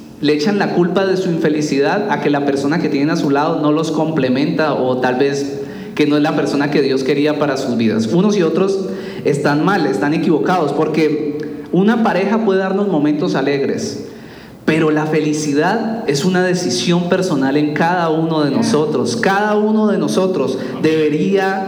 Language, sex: Spanish, male